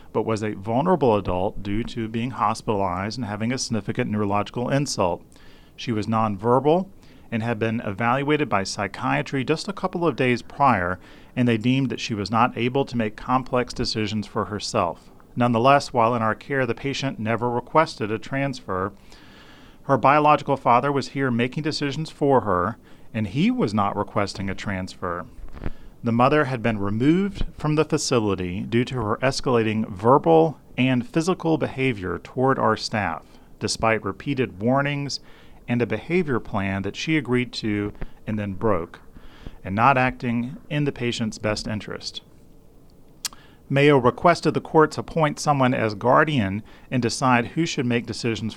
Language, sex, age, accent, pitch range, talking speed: English, male, 40-59, American, 110-140 Hz, 155 wpm